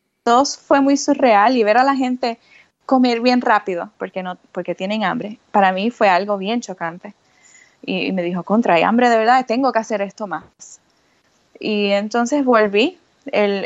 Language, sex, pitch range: Spanish, female, 195-245 Hz